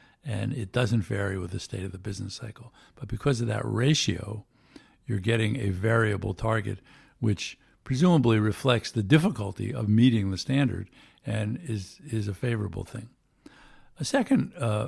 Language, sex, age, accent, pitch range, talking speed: English, male, 60-79, American, 105-125 Hz, 155 wpm